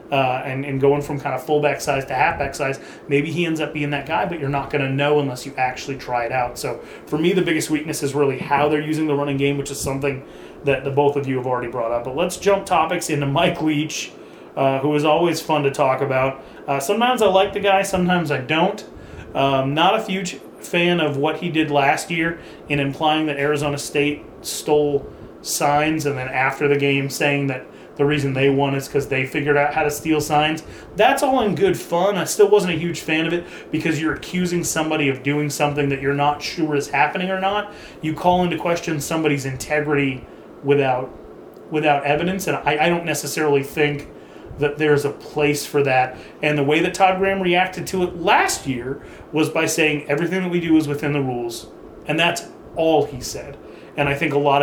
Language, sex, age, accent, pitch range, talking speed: English, male, 30-49, American, 140-165 Hz, 220 wpm